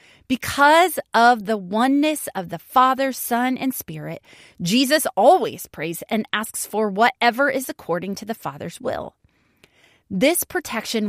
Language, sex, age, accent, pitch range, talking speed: English, female, 30-49, American, 175-235 Hz, 135 wpm